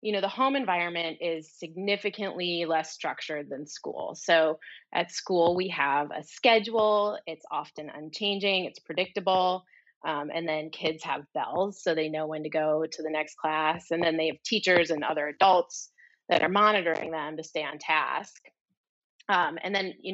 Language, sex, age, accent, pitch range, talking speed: English, female, 30-49, American, 160-195 Hz, 175 wpm